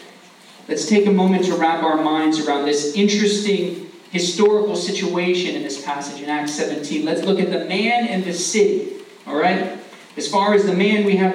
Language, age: English, 40-59